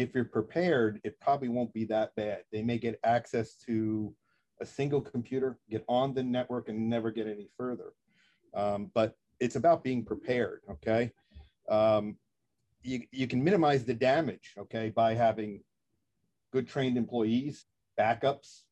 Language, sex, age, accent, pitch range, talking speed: English, male, 50-69, American, 110-135 Hz, 150 wpm